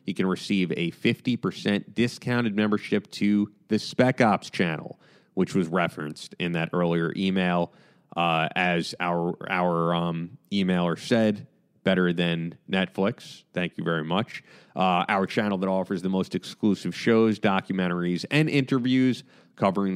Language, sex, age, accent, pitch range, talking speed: English, male, 30-49, American, 90-120 Hz, 140 wpm